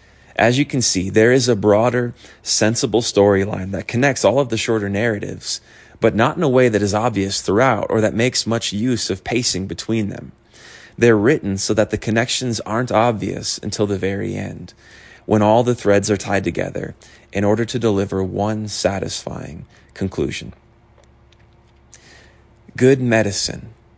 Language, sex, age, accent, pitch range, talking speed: English, male, 30-49, American, 100-120 Hz, 160 wpm